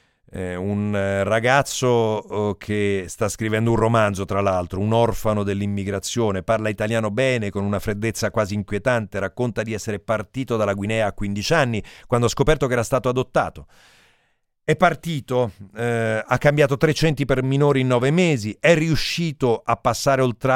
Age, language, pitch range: 40-59, Italian, 105-130 Hz